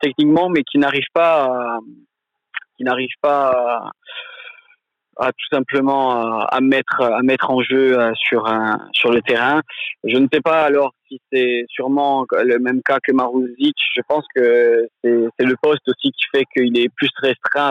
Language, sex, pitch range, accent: French, male, 120-150 Hz, French